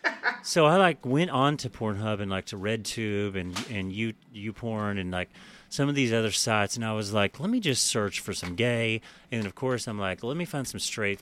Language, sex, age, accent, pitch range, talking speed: English, male, 30-49, American, 100-135 Hz, 245 wpm